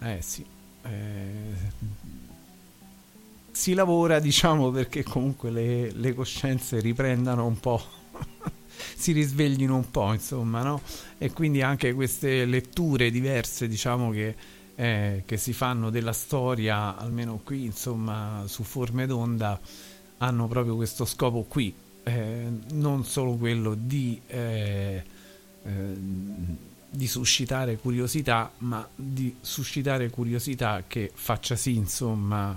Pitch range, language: 105-135 Hz, Italian